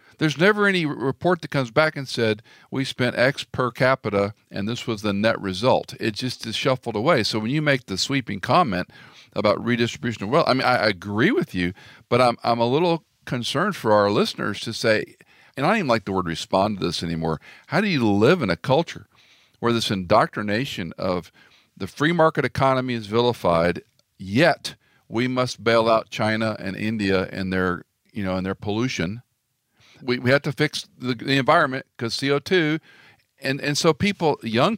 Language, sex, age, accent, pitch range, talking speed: English, male, 50-69, American, 100-130 Hz, 190 wpm